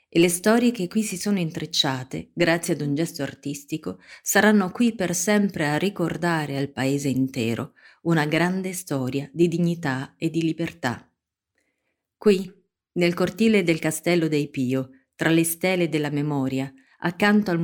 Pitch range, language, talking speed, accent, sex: 145-185 Hz, Italian, 150 wpm, native, female